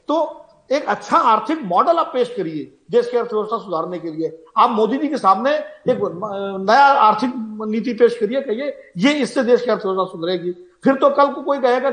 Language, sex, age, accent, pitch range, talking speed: English, male, 50-69, Indian, 205-270 Hz, 190 wpm